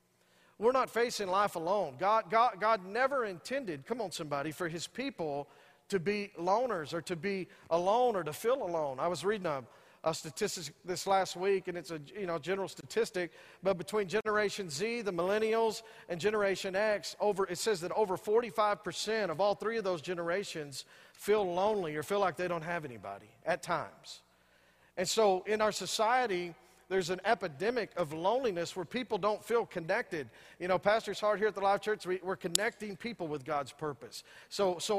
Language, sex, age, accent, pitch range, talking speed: English, male, 40-59, American, 180-220 Hz, 185 wpm